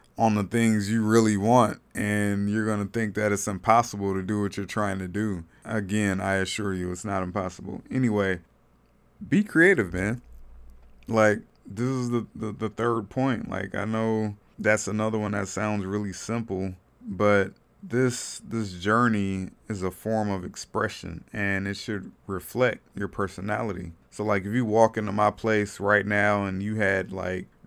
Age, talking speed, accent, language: 20-39, 170 wpm, American, English